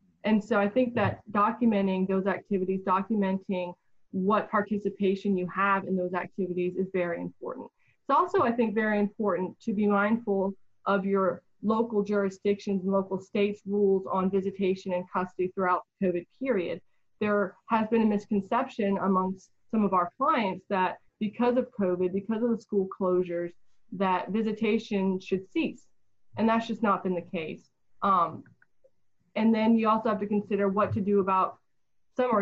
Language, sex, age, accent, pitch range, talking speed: English, female, 20-39, American, 185-215 Hz, 160 wpm